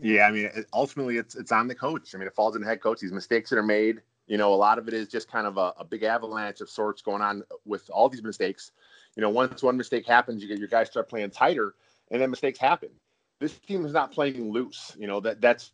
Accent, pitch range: American, 110-150 Hz